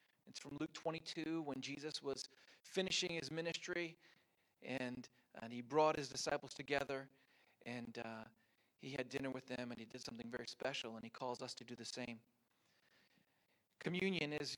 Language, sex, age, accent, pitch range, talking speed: English, male, 40-59, American, 130-160 Hz, 160 wpm